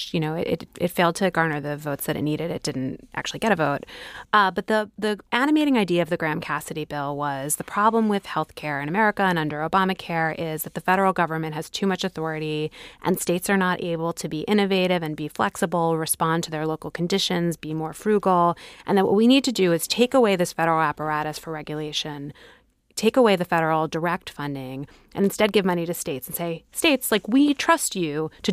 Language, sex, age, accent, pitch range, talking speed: English, female, 30-49, American, 160-195 Hz, 215 wpm